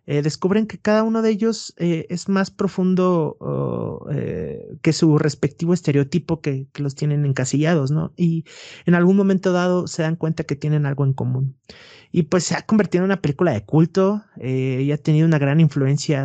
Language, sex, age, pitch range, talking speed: Spanish, male, 30-49, 140-175 Hz, 190 wpm